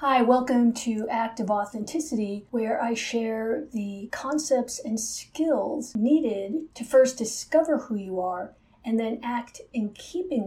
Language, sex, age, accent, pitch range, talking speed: English, female, 50-69, American, 205-260 Hz, 145 wpm